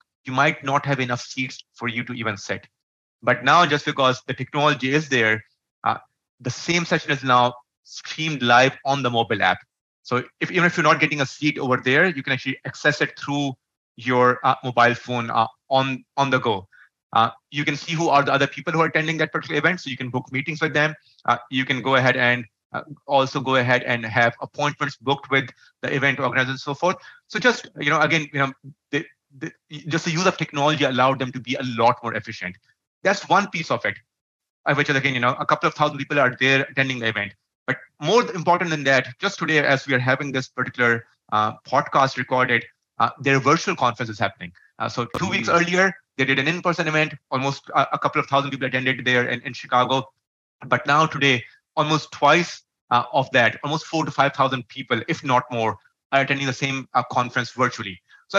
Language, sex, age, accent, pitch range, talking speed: English, male, 30-49, Indian, 125-150 Hz, 215 wpm